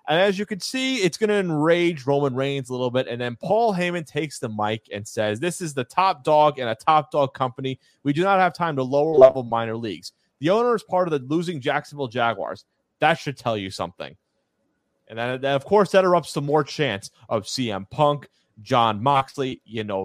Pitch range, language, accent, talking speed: 115-165 Hz, English, American, 220 wpm